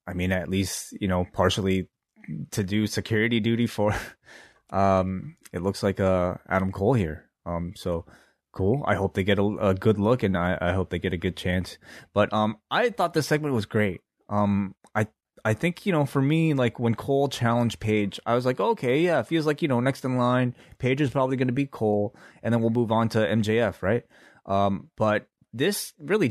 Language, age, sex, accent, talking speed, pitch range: English, 20-39, male, American, 210 wpm, 95-120 Hz